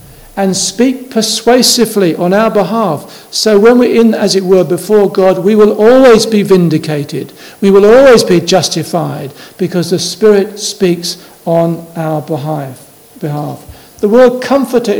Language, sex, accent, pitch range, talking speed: English, male, British, 160-210 Hz, 140 wpm